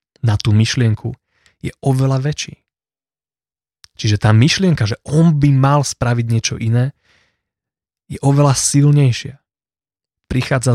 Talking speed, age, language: 110 wpm, 30-49, Slovak